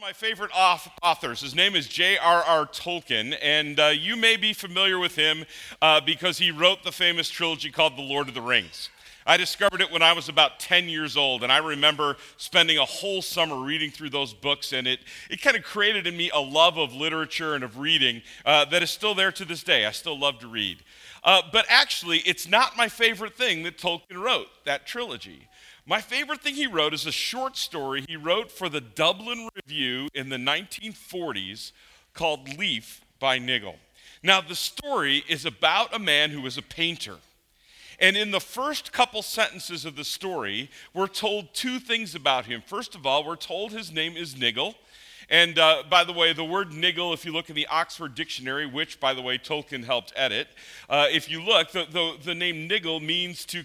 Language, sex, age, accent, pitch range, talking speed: English, male, 40-59, American, 145-190 Hz, 200 wpm